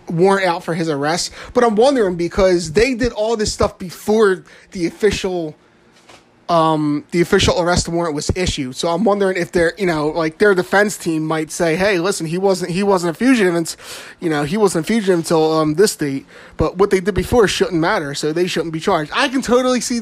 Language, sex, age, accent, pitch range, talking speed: English, male, 20-39, American, 165-220 Hz, 215 wpm